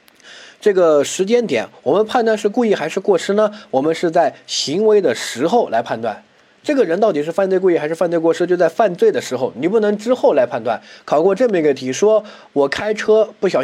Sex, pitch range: male, 145-220 Hz